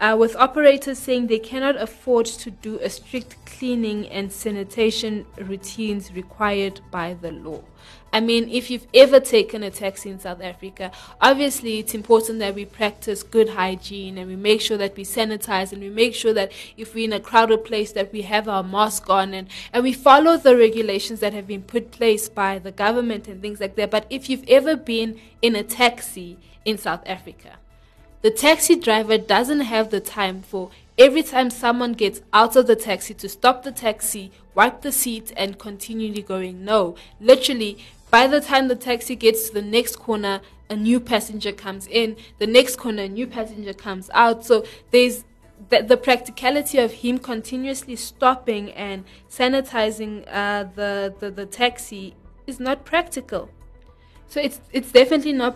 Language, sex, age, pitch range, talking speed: English, female, 20-39, 200-245 Hz, 180 wpm